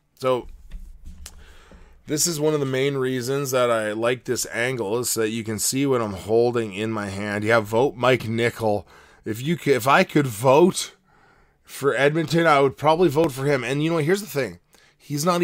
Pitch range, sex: 105-145 Hz, male